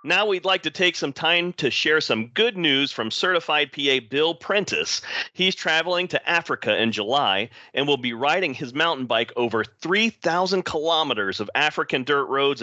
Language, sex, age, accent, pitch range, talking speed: English, male, 40-59, American, 120-165 Hz, 175 wpm